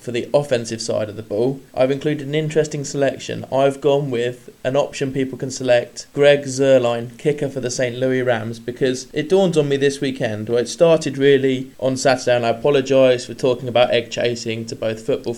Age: 20-39